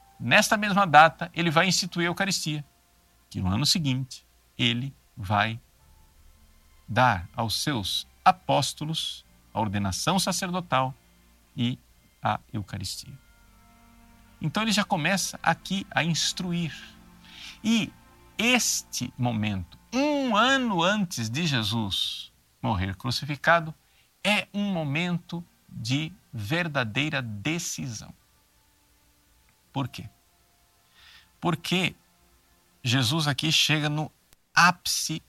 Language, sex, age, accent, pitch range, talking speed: Portuguese, male, 50-69, Brazilian, 95-160 Hz, 95 wpm